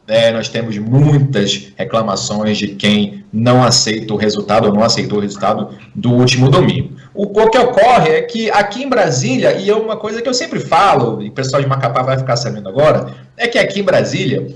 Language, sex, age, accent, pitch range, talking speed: Portuguese, male, 40-59, Brazilian, 115-155 Hz, 200 wpm